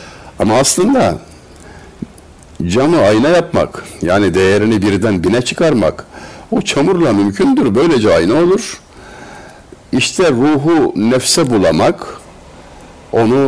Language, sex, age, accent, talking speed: Turkish, male, 60-79, native, 95 wpm